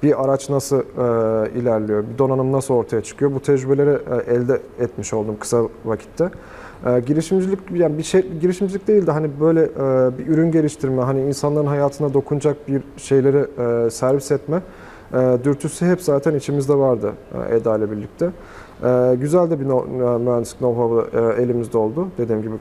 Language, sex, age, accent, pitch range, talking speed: Turkish, male, 40-59, native, 120-150 Hz, 160 wpm